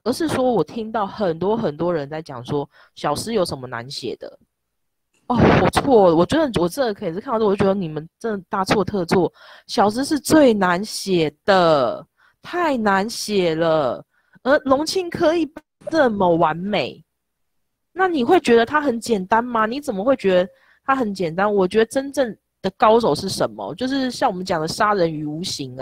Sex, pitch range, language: female, 155-230 Hz, Chinese